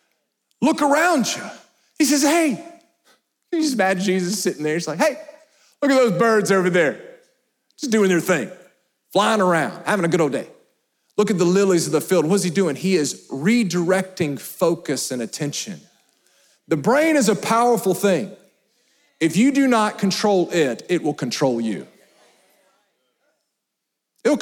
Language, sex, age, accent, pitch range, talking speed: English, male, 40-59, American, 185-275 Hz, 160 wpm